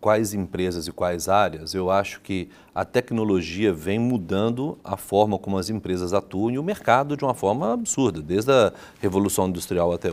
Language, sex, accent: Portuguese, male, Brazilian